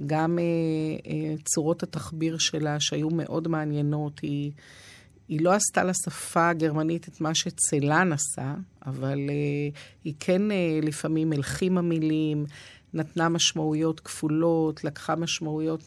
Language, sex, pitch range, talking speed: Hebrew, female, 145-165 Hz, 120 wpm